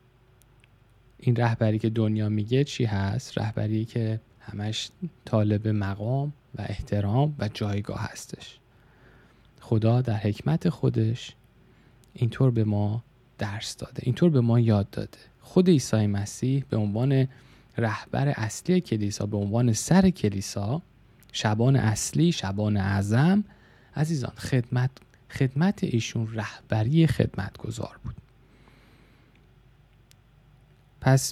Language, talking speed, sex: Persian, 105 wpm, male